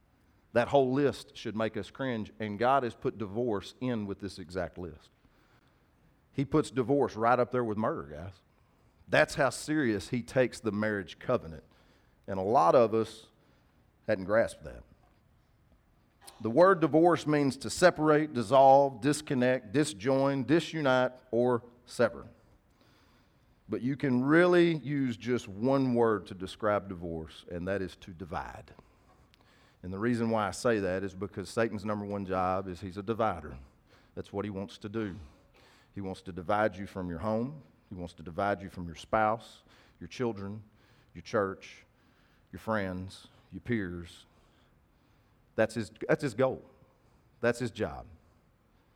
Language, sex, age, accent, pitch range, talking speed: English, male, 40-59, American, 95-130 Hz, 155 wpm